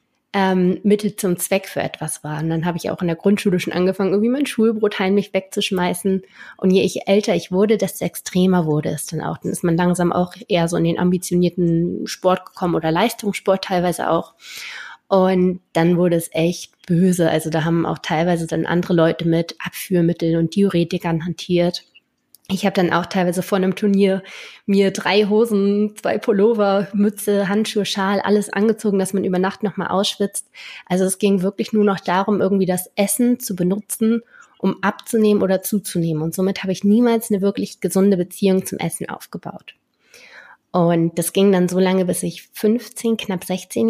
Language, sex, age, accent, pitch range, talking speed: German, female, 20-39, German, 175-205 Hz, 180 wpm